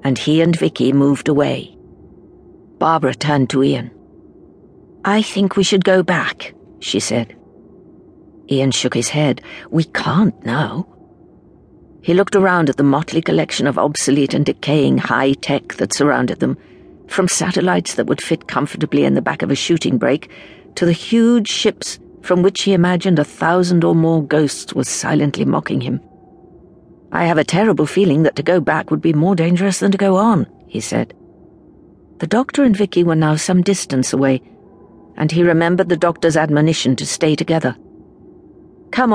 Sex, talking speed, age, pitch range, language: female, 165 wpm, 50-69, 145-195 Hz, English